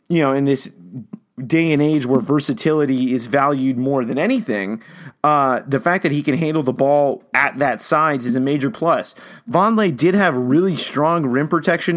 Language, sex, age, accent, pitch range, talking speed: English, male, 30-49, American, 130-150 Hz, 185 wpm